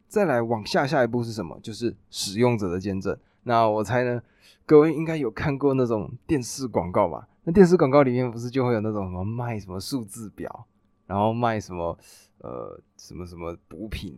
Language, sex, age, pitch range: Chinese, male, 20-39, 100-125 Hz